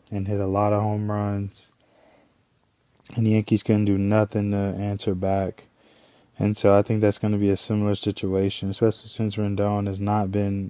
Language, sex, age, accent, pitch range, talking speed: English, male, 20-39, American, 105-115 Hz, 185 wpm